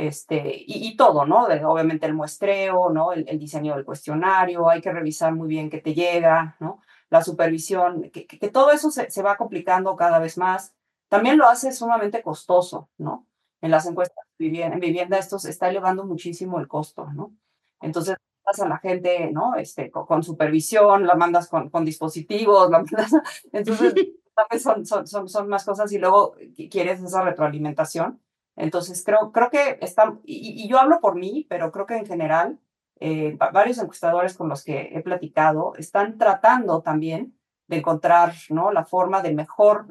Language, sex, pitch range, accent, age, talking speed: Spanish, female, 165-215 Hz, Mexican, 30-49, 180 wpm